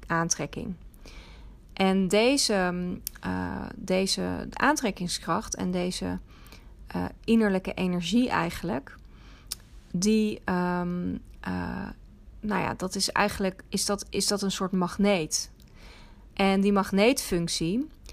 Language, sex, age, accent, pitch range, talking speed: Dutch, female, 30-49, Dutch, 170-205 Hz, 100 wpm